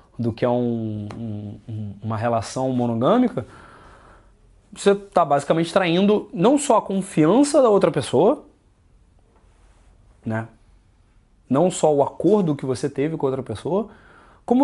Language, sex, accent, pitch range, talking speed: Portuguese, male, Brazilian, 130-215 Hz, 130 wpm